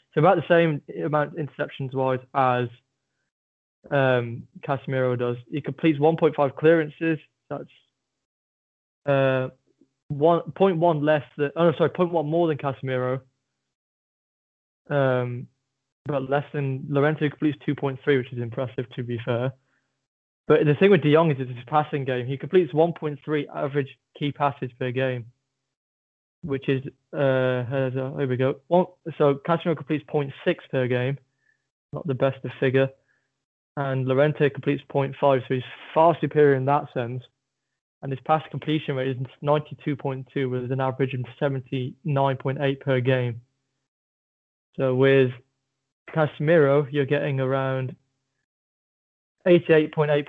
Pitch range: 130-150 Hz